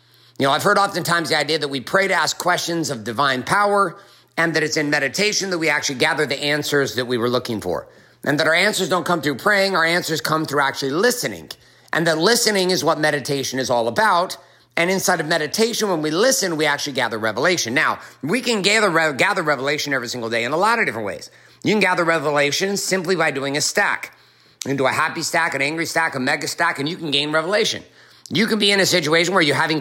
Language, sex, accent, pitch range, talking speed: English, male, American, 145-185 Hz, 230 wpm